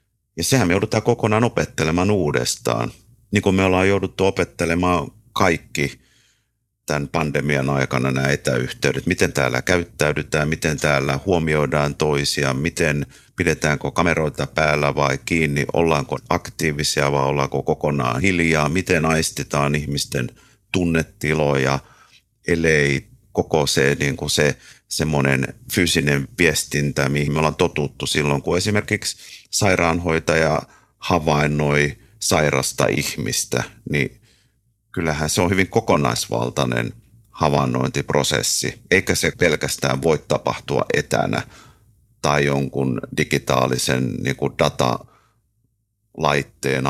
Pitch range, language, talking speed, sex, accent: 70-95 Hz, Finnish, 100 wpm, male, native